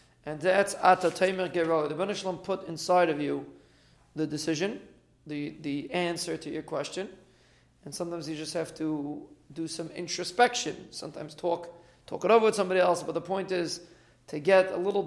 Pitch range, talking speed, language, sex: 155-185 Hz, 175 wpm, English, male